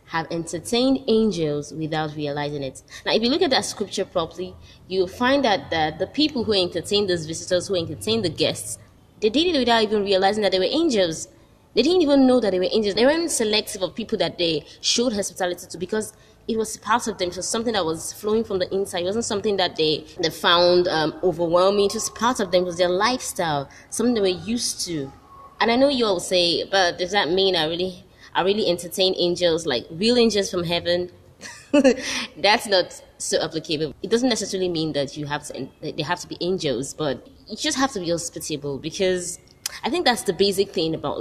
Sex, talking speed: female, 215 wpm